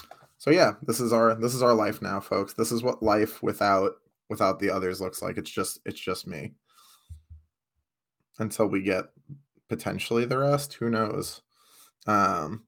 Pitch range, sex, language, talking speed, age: 105-130 Hz, male, English, 165 wpm, 20-39